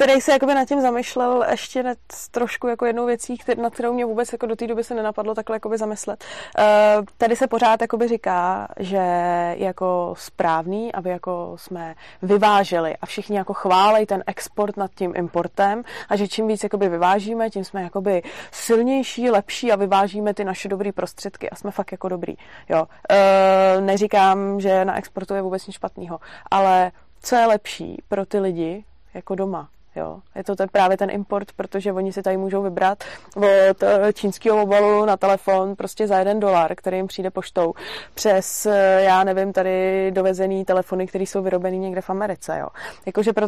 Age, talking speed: 20-39, 175 wpm